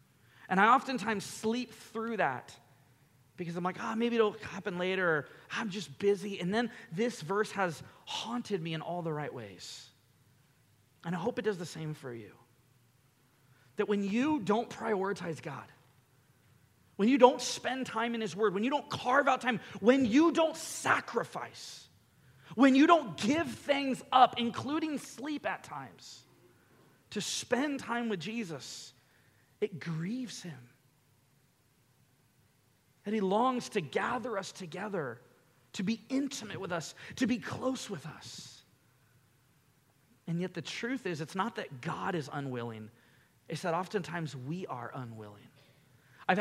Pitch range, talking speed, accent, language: 135-225 Hz, 150 wpm, American, English